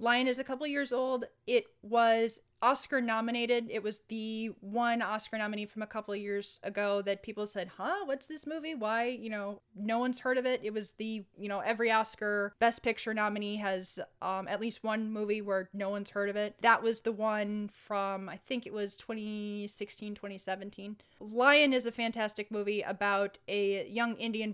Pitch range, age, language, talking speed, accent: 195-225 Hz, 20-39, English, 195 wpm, American